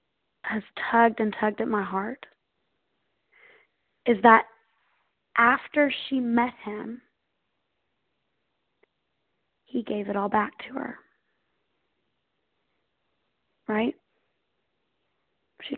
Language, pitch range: English, 215-240 Hz